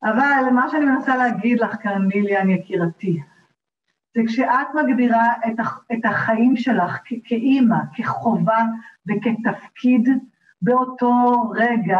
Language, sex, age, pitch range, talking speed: Hebrew, female, 50-69, 230-315 Hz, 100 wpm